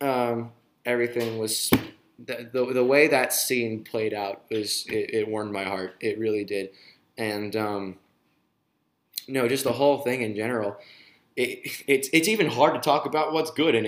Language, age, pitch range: English, 20-39, 105-125 Hz